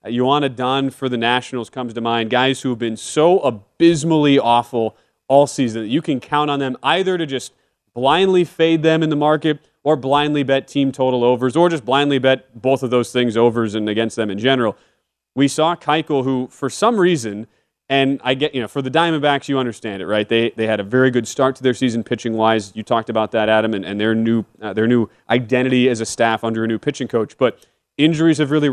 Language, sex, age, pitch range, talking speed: English, male, 30-49, 115-145 Hz, 225 wpm